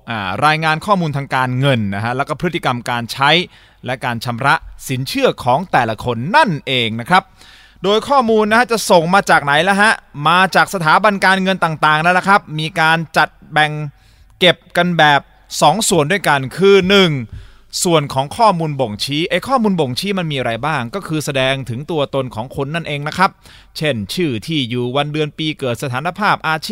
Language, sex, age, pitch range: Thai, male, 20-39, 130-180 Hz